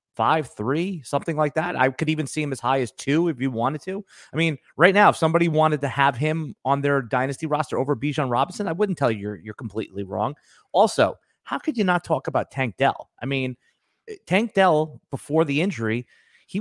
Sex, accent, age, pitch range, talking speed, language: male, American, 30-49, 115-155 Hz, 215 wpm, English